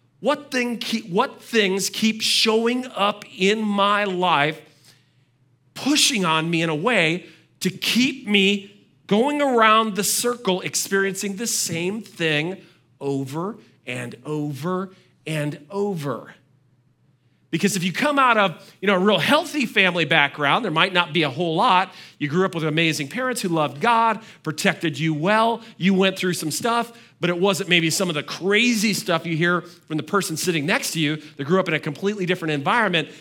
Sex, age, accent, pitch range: male, 40-59, American, 155-205 Hz